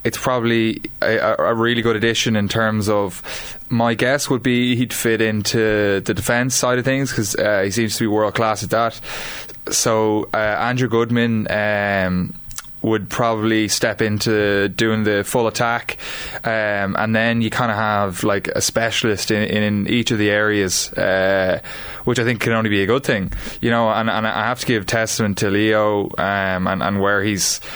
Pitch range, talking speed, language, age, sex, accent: 100-115 Hz, 185 wpm, English, 20-39, male, Irish